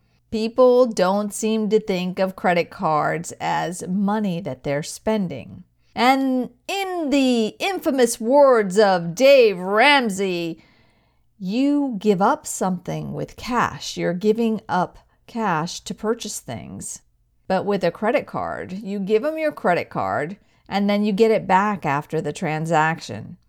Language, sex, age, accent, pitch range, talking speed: English, female, 50-69, American, 180-235 Hz, 140 wpm